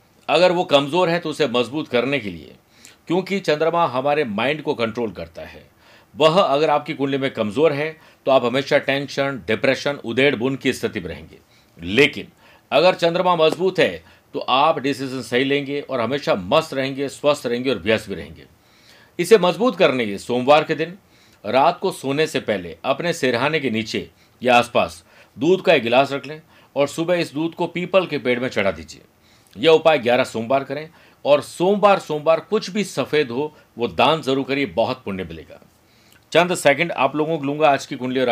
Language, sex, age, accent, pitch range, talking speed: Hindi, male, 50-69, native, 120-160 Hz, 190 wpm